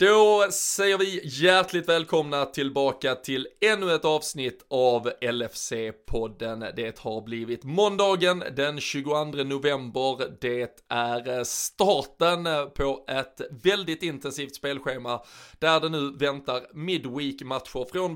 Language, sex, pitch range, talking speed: Swedish, male, 125-165 Hz, 110 wpm